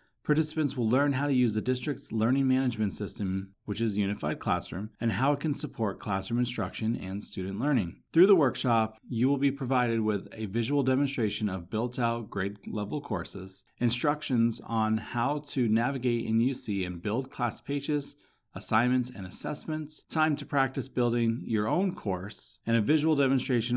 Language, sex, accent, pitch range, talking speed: English, male, American, 105-135 Hz, 170 wpm